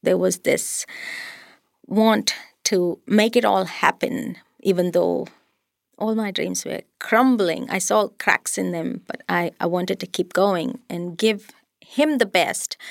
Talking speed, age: 155 wpm, 30-49